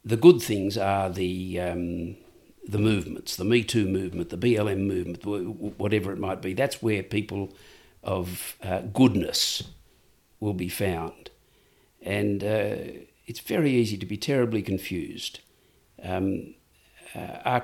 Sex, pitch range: male, 95-125 Hz